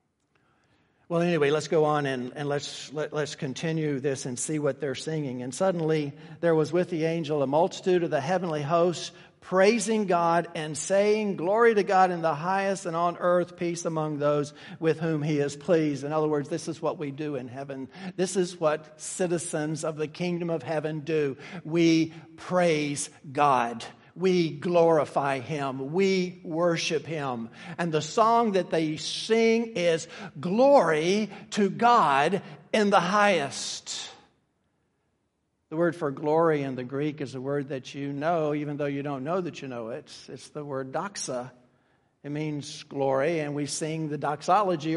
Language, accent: English, American